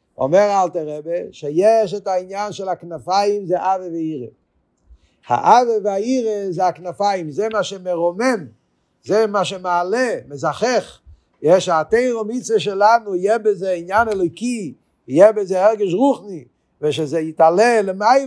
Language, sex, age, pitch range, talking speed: Hebrew, male, 50-69, 160-215 Hz, 120 wpm